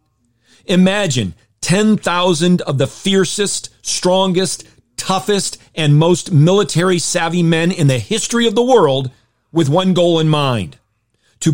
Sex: male